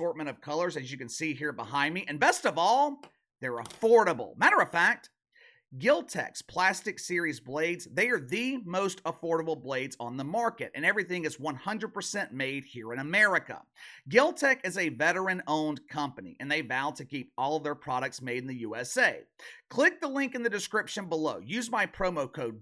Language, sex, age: English, male, 30-49